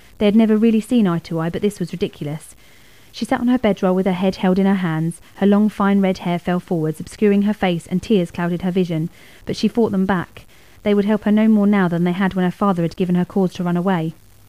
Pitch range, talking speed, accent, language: 175-210 Hz, 265 wpm, British, English